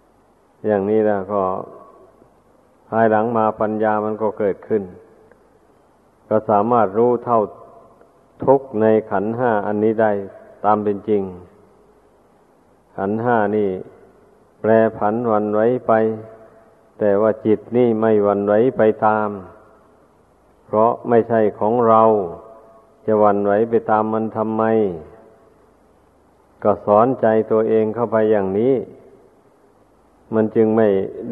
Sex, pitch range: male, 105-115 Hz